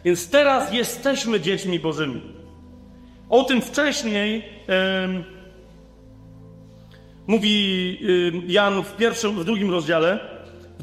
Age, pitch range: 40-59, 165-225 Hz